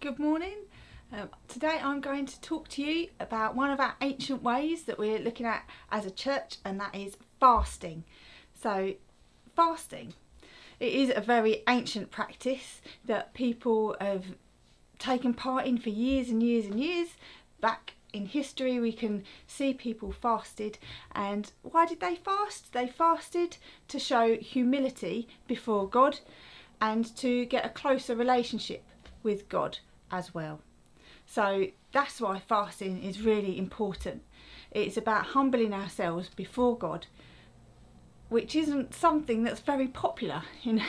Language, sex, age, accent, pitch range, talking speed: English, female, 40-59, British, 210-275 Hz, 140 wpm